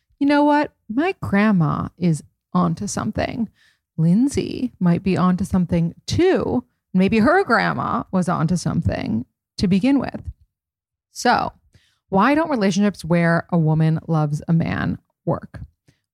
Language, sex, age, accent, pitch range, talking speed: English, female, 30-49, American, 170-230 Hz, 125 wpm